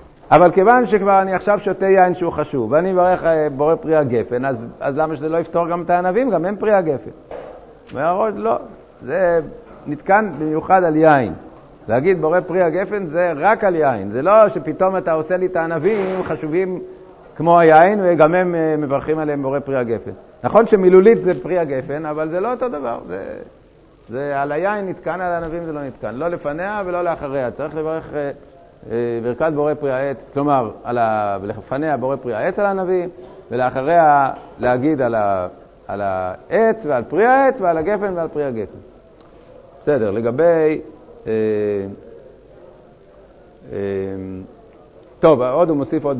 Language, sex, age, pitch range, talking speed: Hebrew, male, 50-69, 140-185 Hz, 155 wpm